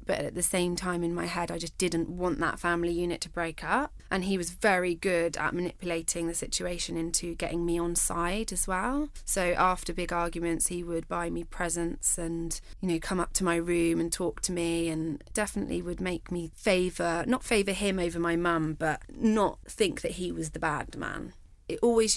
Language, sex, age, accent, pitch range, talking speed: English, female, 20-39, British, 170-185 Hz, 210 wpm